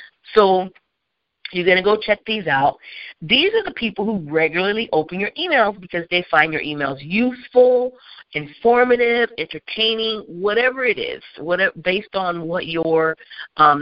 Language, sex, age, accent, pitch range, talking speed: English, female, 40-59, American, 150-205 Hz, 145 wpm